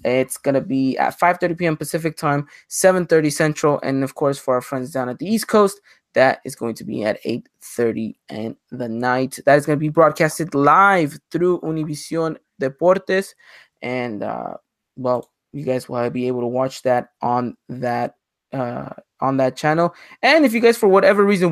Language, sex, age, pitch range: English, male, 20-39, 130-170 Hz